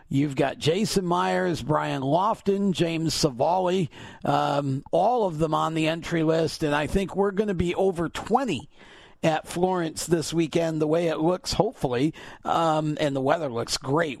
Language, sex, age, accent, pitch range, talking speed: English, male, 50-69, American, 145-170 Hz, 165 wpm